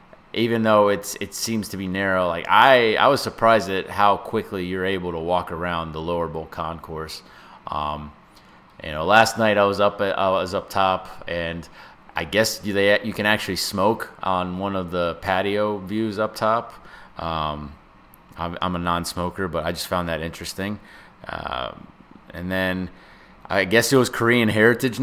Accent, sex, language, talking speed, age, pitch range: American, male, English, 180 wpm, 30-49, 85-105 Hz